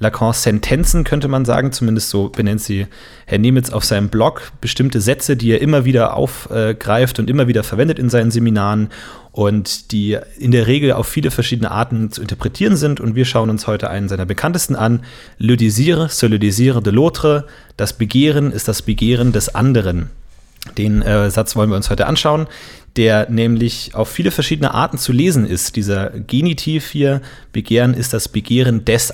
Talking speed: 180 wpm